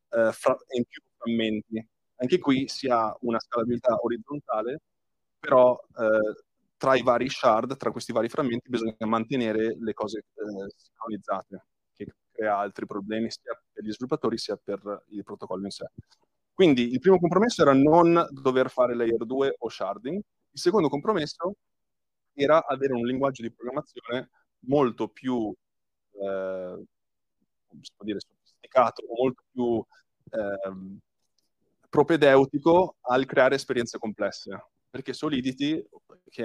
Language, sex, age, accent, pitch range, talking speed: Italian, male, 30-49, native, 110-135 Hz, 125 wpm